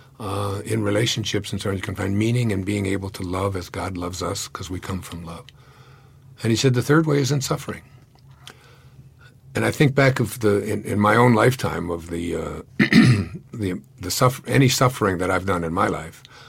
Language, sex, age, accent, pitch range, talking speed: English, male, 50-69, American, 100-125 Hz, 210 wpm